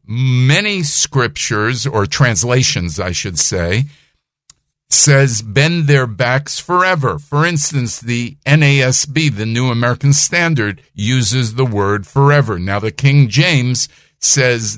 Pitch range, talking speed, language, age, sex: 110-145 Hz, 120 wpm, English, 50-69, male